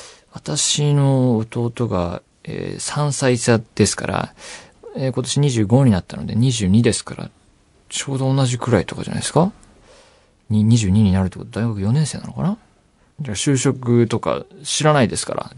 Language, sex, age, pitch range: Japanese, male, 40-59, 100-135 Hz